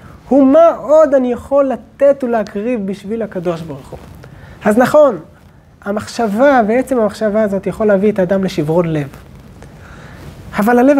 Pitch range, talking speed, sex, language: 200-255 Hz, 130 wpm, male, Hebrew